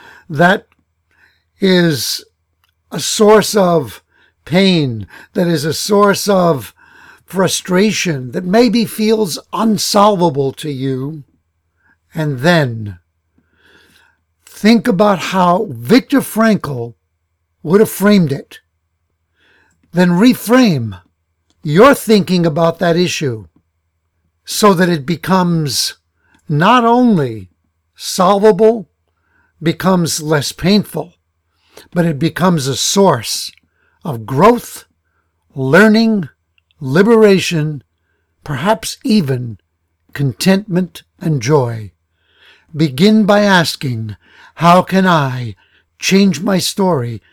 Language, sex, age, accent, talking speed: English, male, 60-79, American, 85 wpm